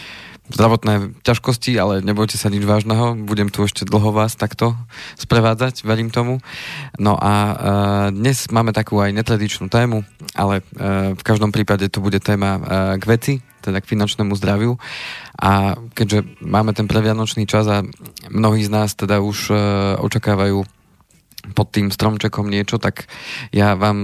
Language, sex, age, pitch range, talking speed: Slovak, male, 20-39, 105-120 Hz, 150 wpm